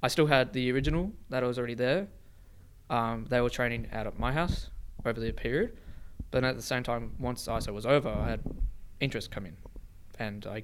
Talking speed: 215 wpm